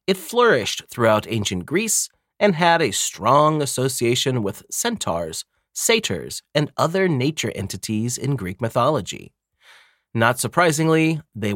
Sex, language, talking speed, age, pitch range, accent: male, English, 120 wpm, 30-49, 105-150 Hz, American